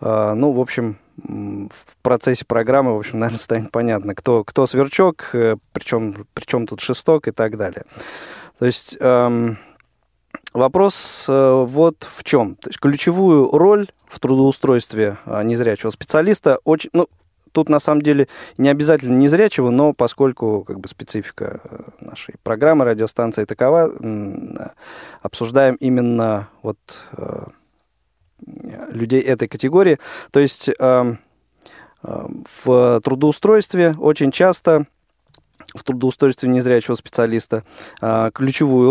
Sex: male